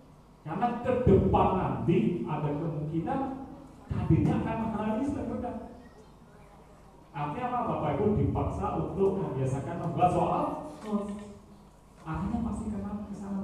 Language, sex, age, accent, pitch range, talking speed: Indonesian, male, 40-59, native, 125-170 Hz, 105 wpm